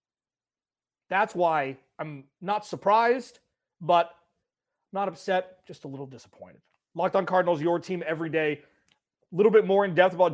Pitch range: 145-185 Hz